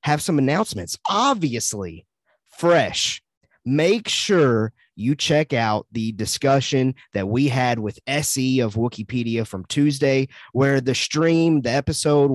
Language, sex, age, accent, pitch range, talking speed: English, male, 30-49, American, 120-155 Hz, 125 wpm